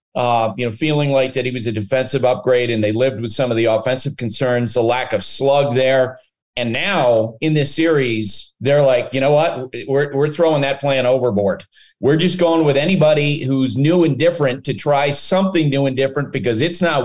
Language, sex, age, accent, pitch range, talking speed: English, male, 40-59, American, 130-165 Hz, 210 wpm